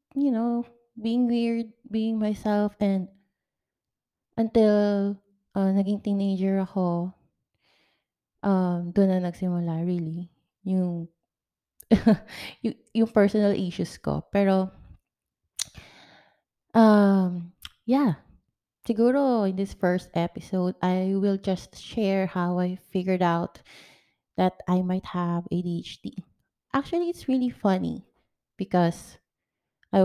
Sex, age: female, 20-39